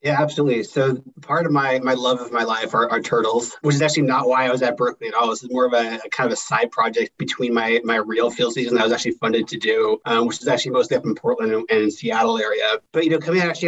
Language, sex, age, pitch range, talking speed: English, male, 30-49, 120-160 Hz, 285 wpm